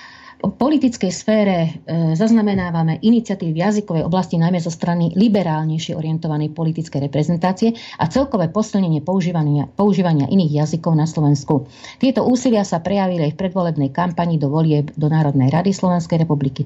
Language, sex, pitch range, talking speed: Slovak, female, 155-190 Hz, 145 wpm